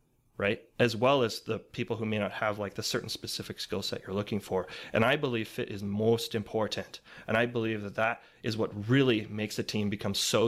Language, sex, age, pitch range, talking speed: English, male, 30-49, 105-125 Hz, 225 wpm